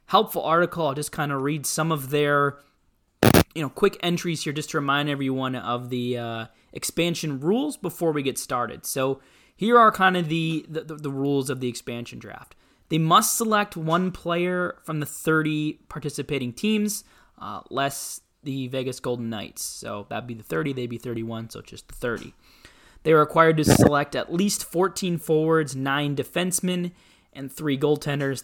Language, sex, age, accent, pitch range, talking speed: English, male, 20-39, American, 125-160 Hz, 175 wpm